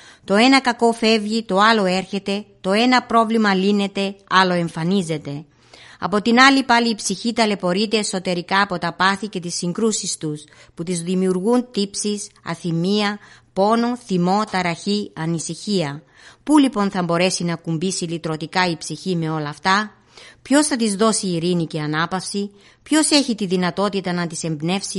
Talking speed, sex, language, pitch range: 150 wpm, female, Greek, 170-215 Hz